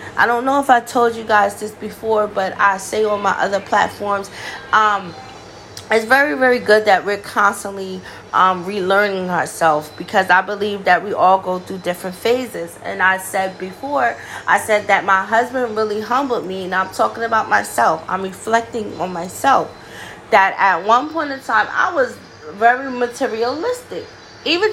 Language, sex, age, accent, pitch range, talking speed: English, female, 20-39, American, 200-275 Hz, 170 wpm